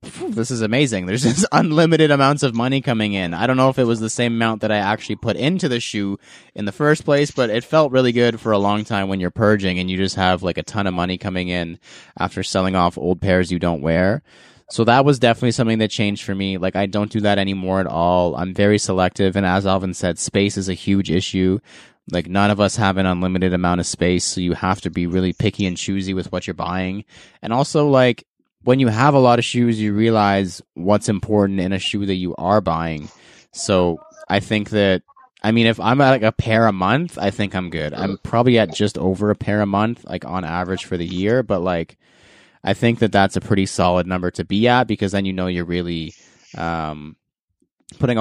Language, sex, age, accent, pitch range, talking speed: English, male, 20-39, American, 90-115 Hz, 235 wpm